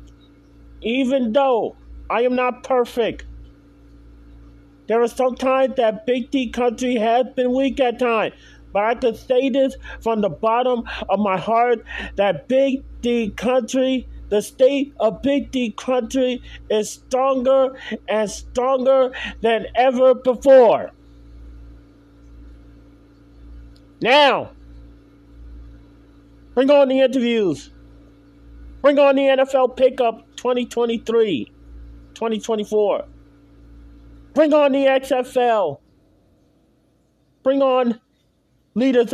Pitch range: 160-255 Hz